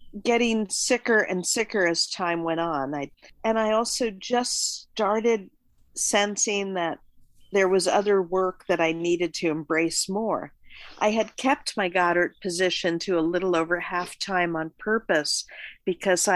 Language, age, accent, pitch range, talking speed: English, 50-69, American, 175-205 Hz, 145 wpm